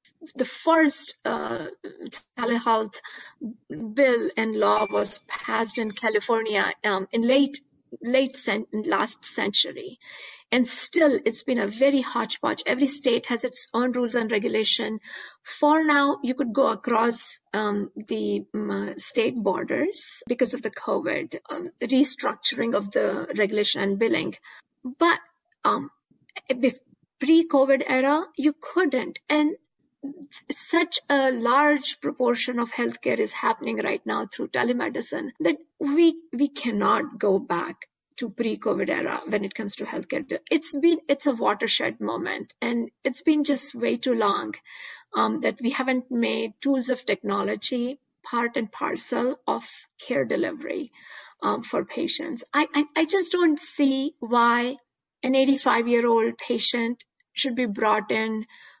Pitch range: 235-295 Hz